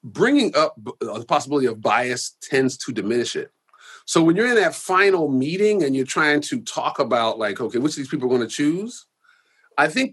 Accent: American